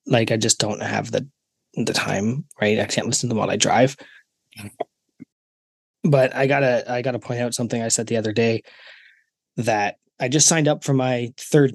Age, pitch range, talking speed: 20-39, 120-145 Hz, 200 wpm